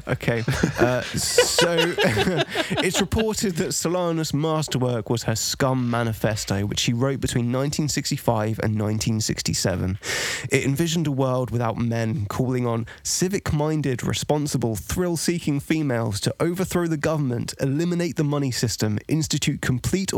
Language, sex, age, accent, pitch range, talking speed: English, male, 20-39, British, 110-145 Hz, 120 wpm